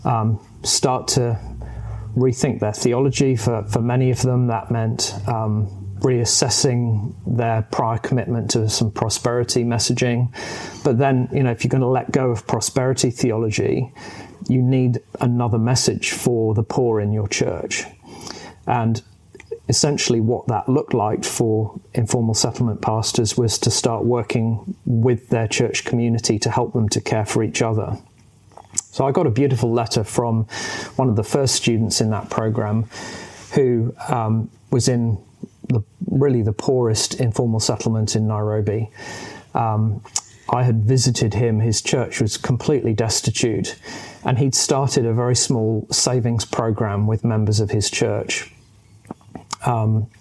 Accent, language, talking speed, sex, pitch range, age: British, English, 145 wpm, male, 110-125 Hz, 40-59